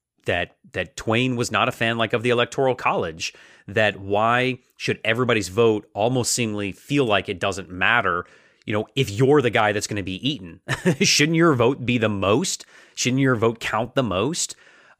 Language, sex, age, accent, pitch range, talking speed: English, male, 30-49, American, 105-130 Hz, 185 wpm